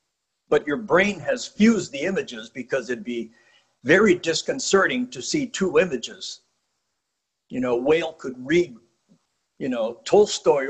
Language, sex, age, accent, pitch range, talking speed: English, male, 60-79, American, 170-270 Hz, 135 wpm